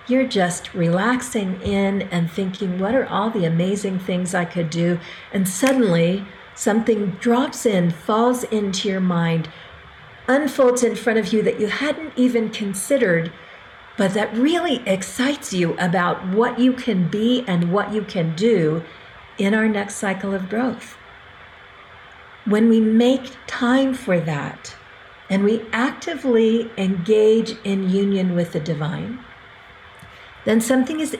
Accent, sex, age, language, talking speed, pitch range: American, female, 50-69, English, 140 wpm, 185-230 Hz